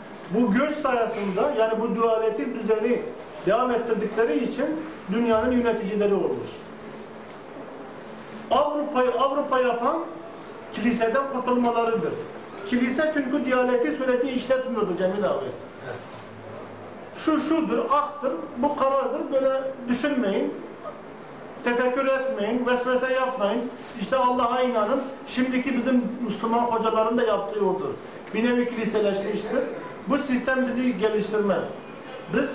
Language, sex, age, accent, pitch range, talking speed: Turkish, male, 50-69, native, 220-260 Hz, 100 wpm